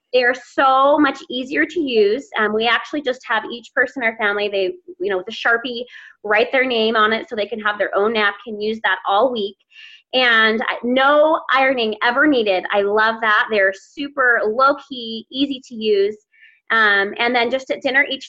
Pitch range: 215-285 Hz